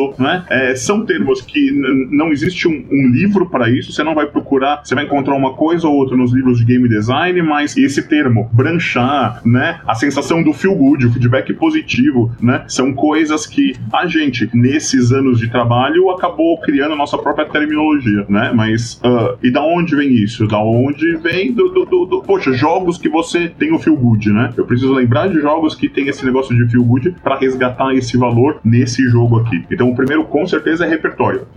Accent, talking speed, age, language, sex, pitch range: Brazilian, 205 wpm, 20-39, Portuguese, male, 120-160 Hz